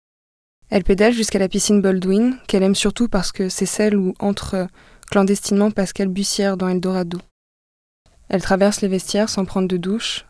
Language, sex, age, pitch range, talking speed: French, female, 20-39, 180-200 Hz, 170 wpm